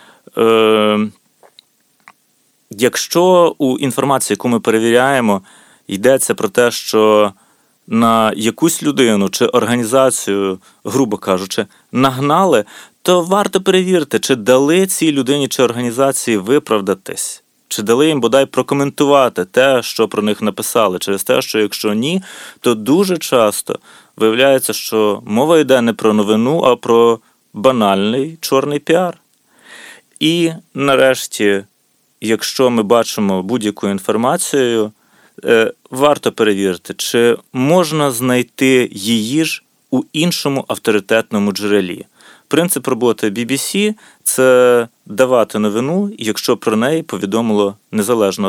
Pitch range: 105-140 Hz